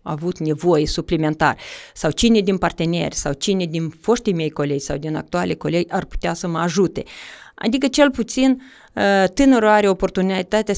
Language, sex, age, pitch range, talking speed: Romanian, female, 30-49, 170-210 Hz, 155 wpm